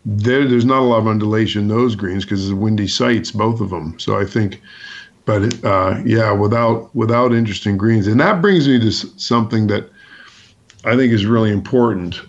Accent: American